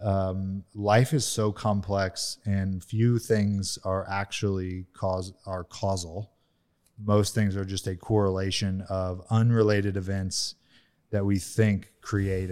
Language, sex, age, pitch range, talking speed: English, male, 30-49, 95-110 Hz, 125 wpm